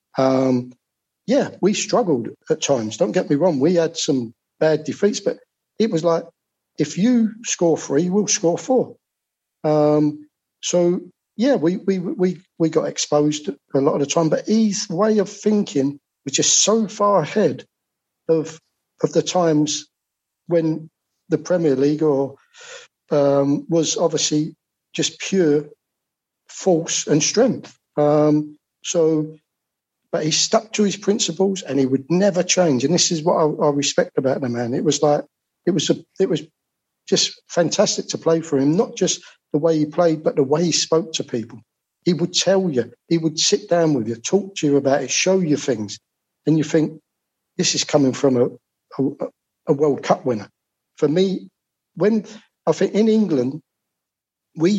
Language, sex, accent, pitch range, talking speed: English, male, British, 145-185 Hz, 170 wpm